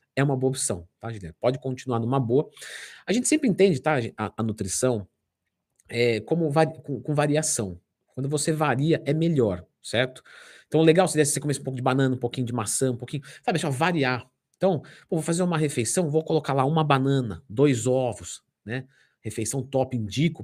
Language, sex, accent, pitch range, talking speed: Portuguese, male, Brazilian, 120-155 Hz, 190 wpm